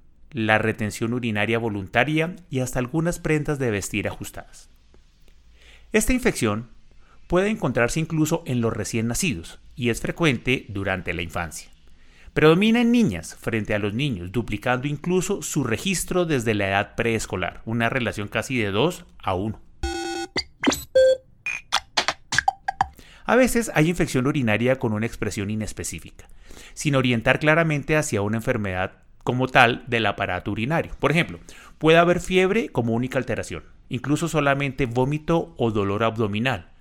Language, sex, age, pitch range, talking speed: Spanish, male, 30-49, 105-150 Hz, 135 wpm